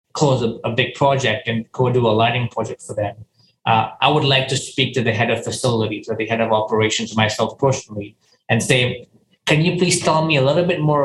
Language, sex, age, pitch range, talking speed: English, male, 20-39, 115-140 Hz, 230 wpm